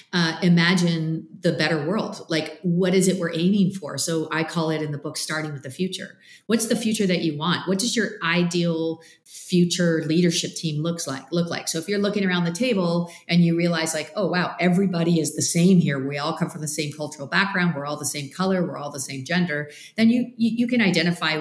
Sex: female